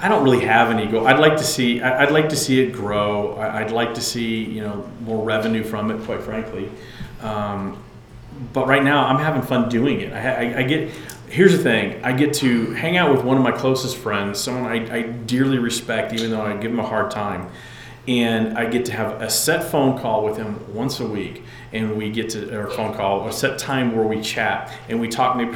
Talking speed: 230 wpm